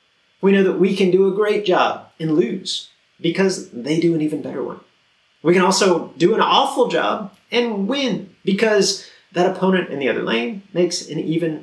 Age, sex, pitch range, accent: 30-49, male, 145-190 Hz, American